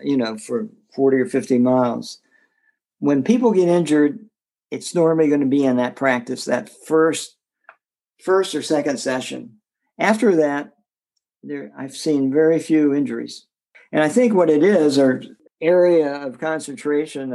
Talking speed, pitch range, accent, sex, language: 150 wpm, 135-175 Hz, American, male, English